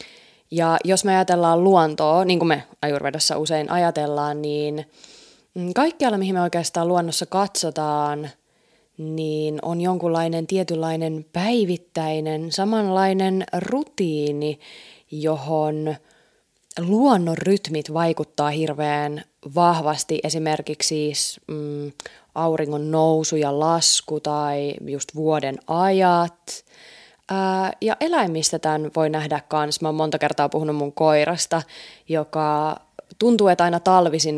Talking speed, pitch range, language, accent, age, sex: 105 wpm, 150-180 Hz, Finnish, native, 20-39, female